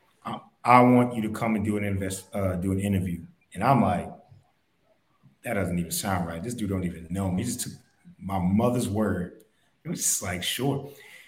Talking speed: 200 wpm